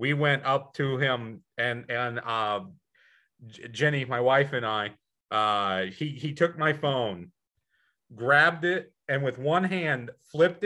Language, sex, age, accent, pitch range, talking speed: English, male, 40-59, American, 115-145 Hz, 145 wpm